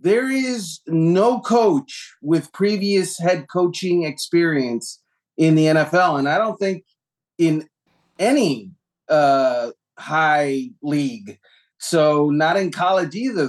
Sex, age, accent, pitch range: male, 30-49, American, 155-200 Hz